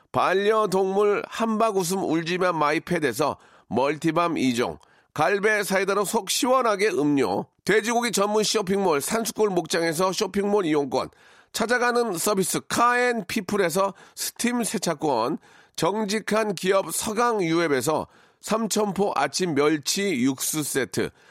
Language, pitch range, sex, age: Korean, 175-220 Hz, male, 40-59